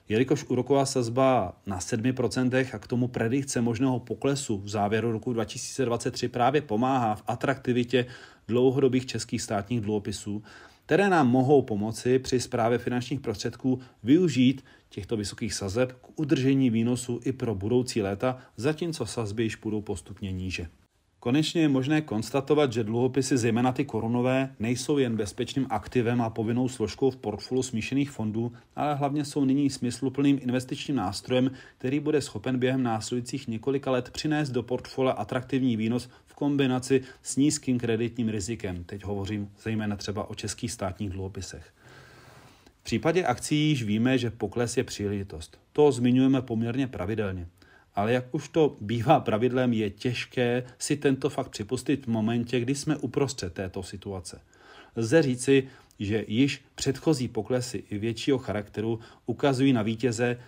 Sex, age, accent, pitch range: male, 30-49, native, 110-135 Hz